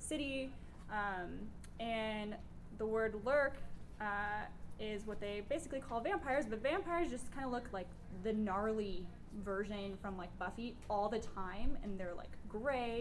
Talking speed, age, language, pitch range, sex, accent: 150 wpm, 10-29, English, 210-265 Hz, female, American